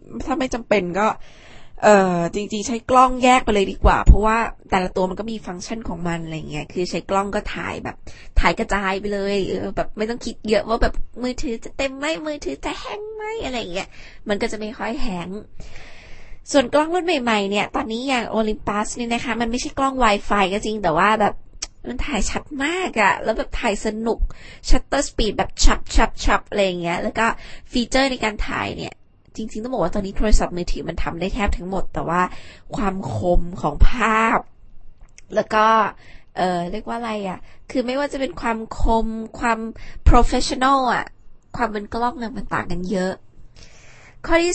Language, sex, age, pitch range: Thai, female, 20-39, 195-235 Hz